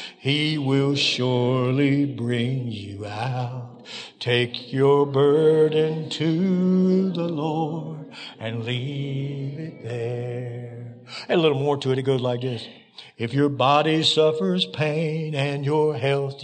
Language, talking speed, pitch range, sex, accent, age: English, 120 wpm, 125-160 Hz, male, American, 60-79